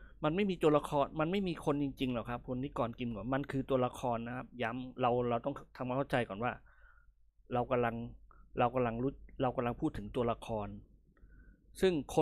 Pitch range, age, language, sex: 120-155 Hz, 20-39, Thai, male